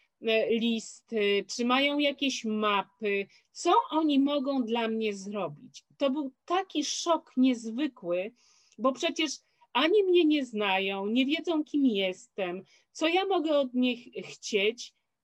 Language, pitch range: Polish, 250-325 Hz